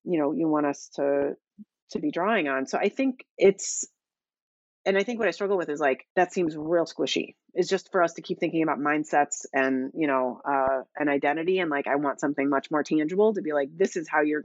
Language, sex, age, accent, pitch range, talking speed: English, female, 30-49, American, 155-200 Hz, 235 wpm